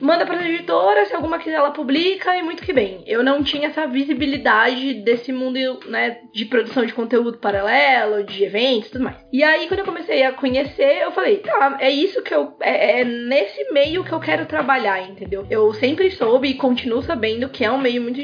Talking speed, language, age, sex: 205 wpm, Portuguese, 20-39, female